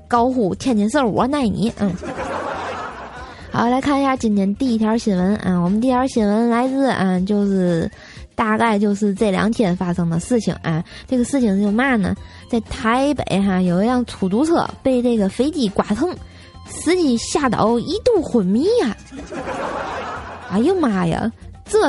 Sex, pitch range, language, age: female, 190-240 Hz, Chinese, 20-39